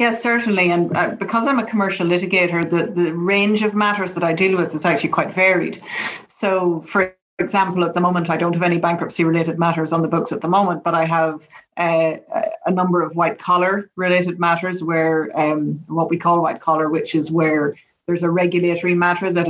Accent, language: Irish, English